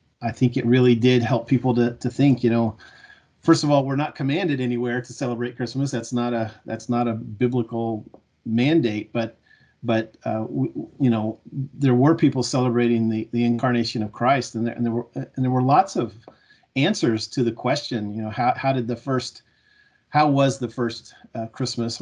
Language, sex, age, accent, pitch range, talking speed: English, male, 40-59, American, 115-130 Hz, 195 wpm